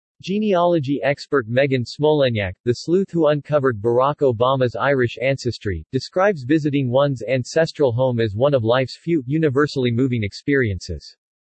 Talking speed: 130 wpm